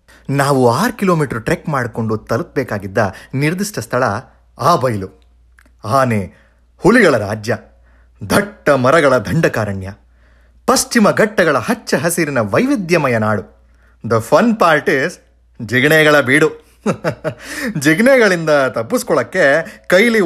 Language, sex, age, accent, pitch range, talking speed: Kannada, male, 30-49, native, 110-180 Hz, 90 wpm